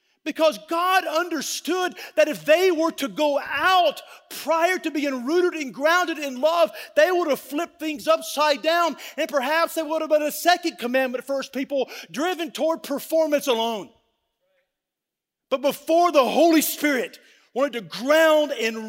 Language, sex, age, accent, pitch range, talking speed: English, male, 40-59, American, 250-320 Hz, 160 wpm